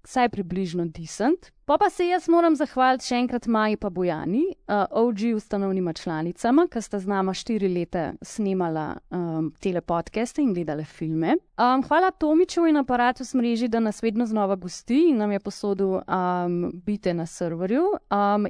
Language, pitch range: English, 200-275 Hz